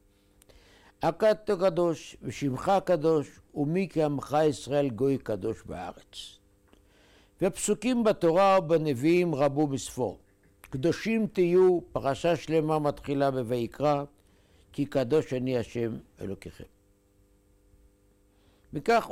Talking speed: 90 wpm